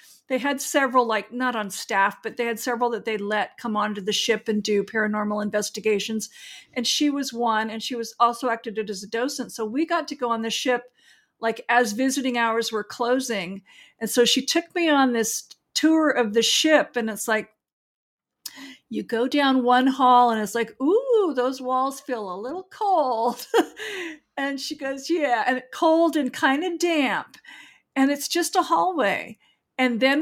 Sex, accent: female, American